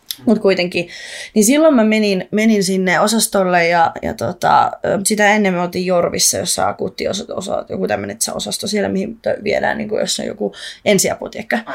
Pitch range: 185-250 Hz